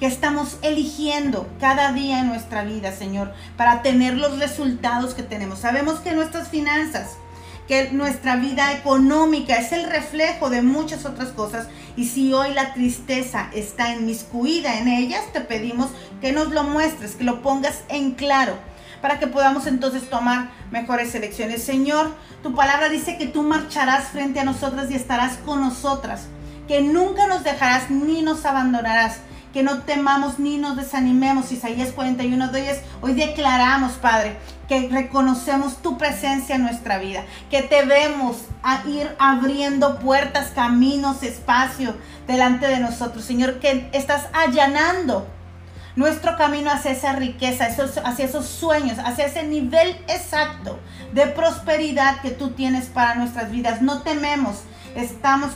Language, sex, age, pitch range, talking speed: Spanish, female, 40-59, 250-295 Hz, 145 wpm